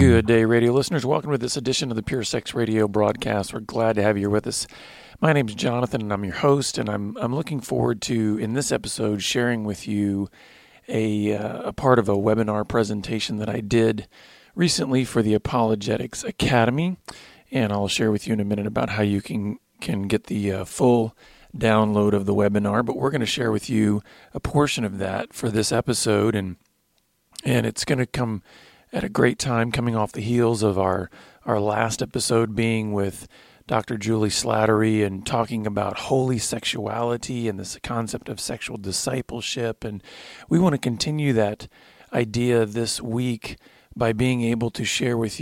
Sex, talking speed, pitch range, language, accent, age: male, 190 wpm, 105-125 Hz, English, American, 40-59